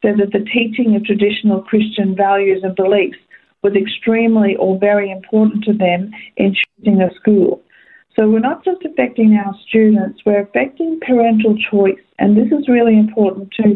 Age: 50-69